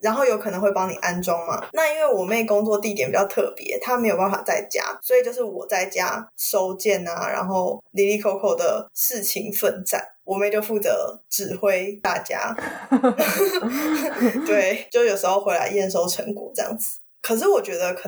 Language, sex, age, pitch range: Chinese, female, 20-39, 195-260 Hz